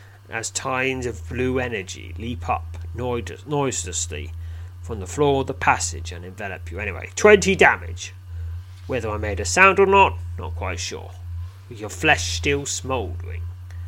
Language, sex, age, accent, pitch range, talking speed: English, male, 30-49, British, 85-95 Hz, 150 wpm